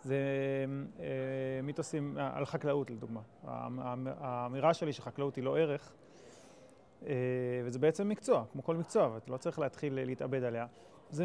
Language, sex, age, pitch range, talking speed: Hebrew, male, 30-49, 135-165 Hz, 130 wpm